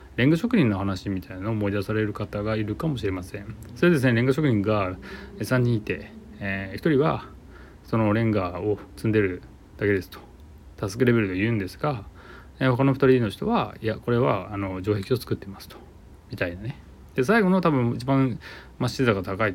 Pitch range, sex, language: 95-120 Hz, male, Japanese